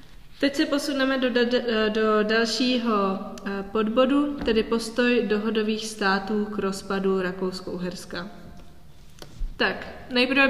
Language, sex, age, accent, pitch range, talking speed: Czech, female, 20-39, native, 190-225 Hz, 95 wpm